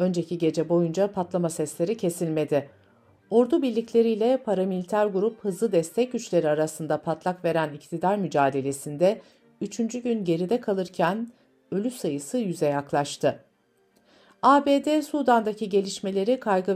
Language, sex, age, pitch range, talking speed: Turkish, female, 60-79, 155-220 Hz, 105 wpm